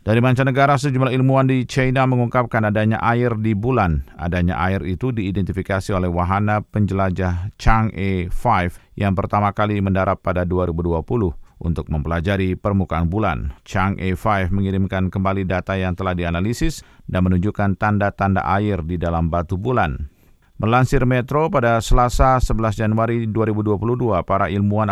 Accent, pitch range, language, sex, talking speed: native, 95-115 Hz, Indonesian, male, 130 wpm